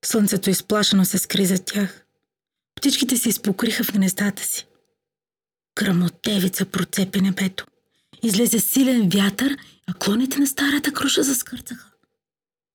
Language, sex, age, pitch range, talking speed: Bulgarian, female, 30-49, 190-250 Hz, 115 wpm